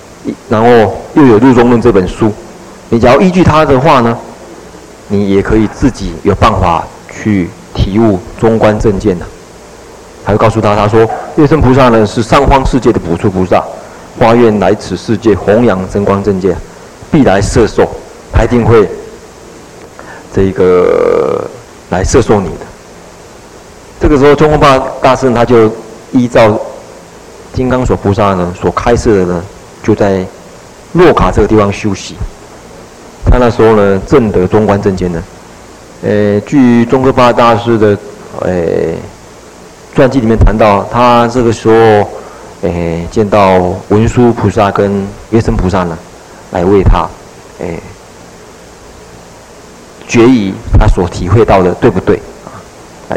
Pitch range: 95-120 Hz